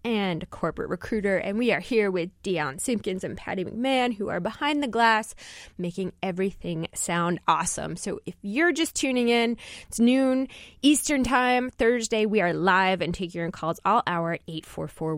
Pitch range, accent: 170-230 Hz, American